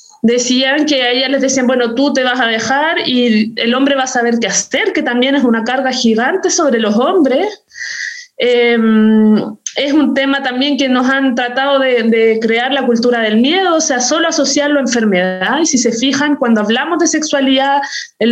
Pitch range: 240-305 Hz